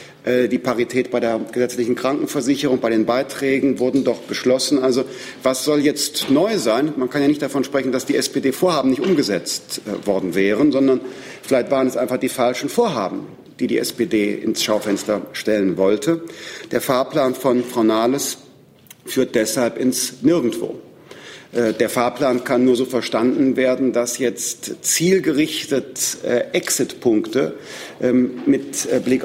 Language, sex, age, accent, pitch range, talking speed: German, male, 50-69, German, 125-150 Hz, 140 wpm